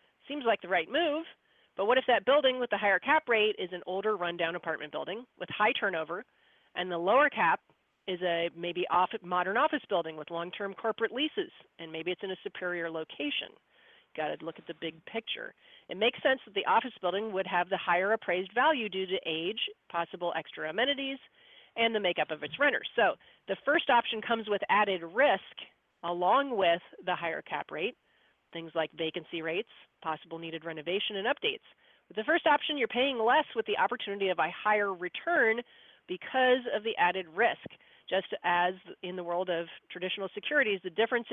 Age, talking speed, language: 40-59, 185 wpm, English